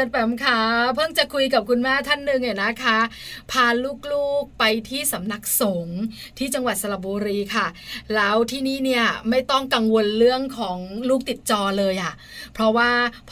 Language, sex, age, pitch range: Thai, female, 20-39, 215-260 Hz